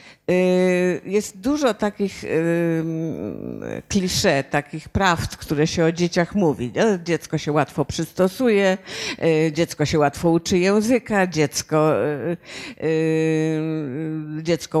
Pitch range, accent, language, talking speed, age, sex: 155-195 Hz, native, Polish, 90 wpm, 50-69, female